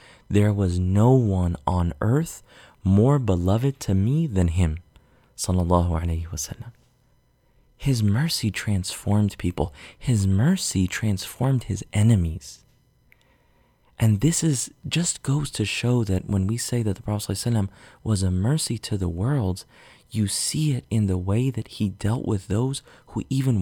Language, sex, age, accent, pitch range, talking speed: English, male, 30-49, American, 95-125 Hz, 145 wpm